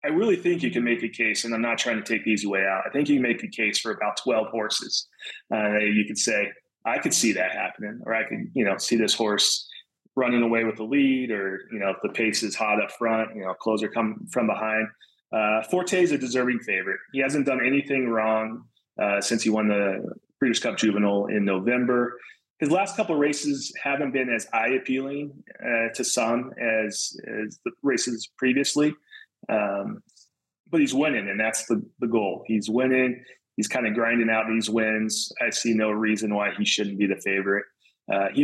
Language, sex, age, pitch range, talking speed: English, male, 30-49, 110-130 Hz, 210 wpm